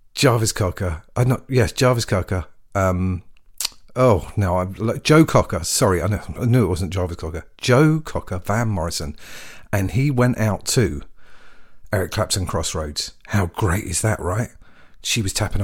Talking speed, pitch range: 150 wpm, 95-125 Hz